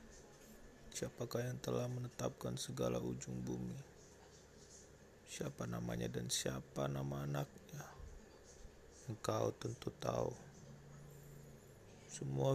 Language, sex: Malay, male